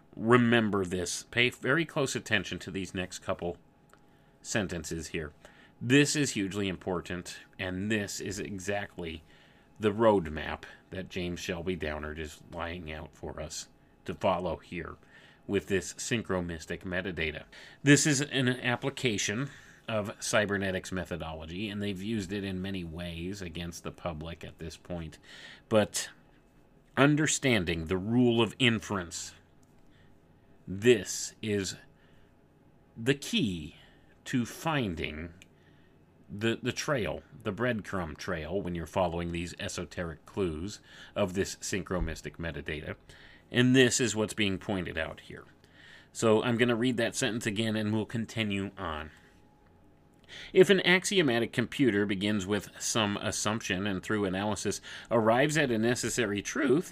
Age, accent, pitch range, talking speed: 30-49, American, 85-120 Hz, 130 wpm